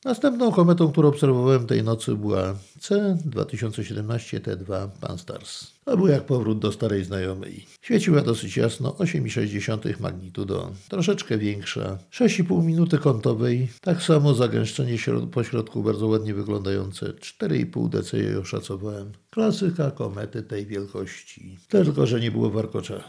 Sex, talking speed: male, 125 wpm